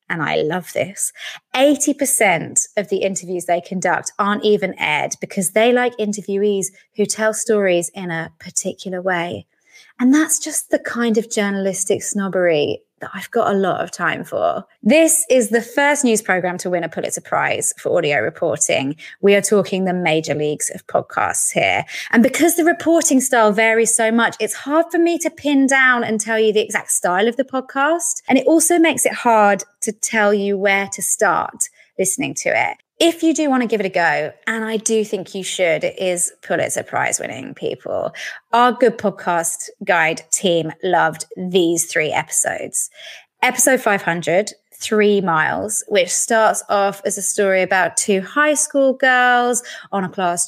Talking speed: 175 wpm